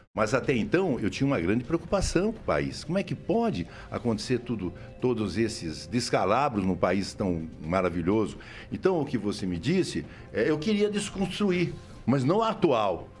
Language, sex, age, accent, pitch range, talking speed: Portuguese, male, 60-79, Brazilian, 105-160 Hz, 170 wpm